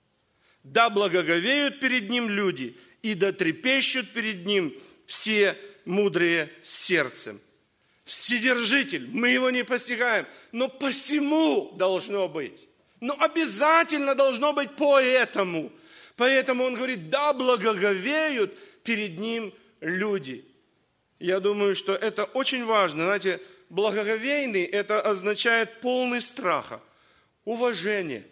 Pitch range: 205-270 Hz